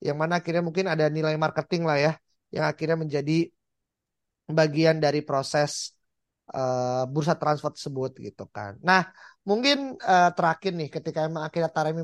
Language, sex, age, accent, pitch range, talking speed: Indonesian, male, 20-39, native, 155-190 Hz, 150 wpm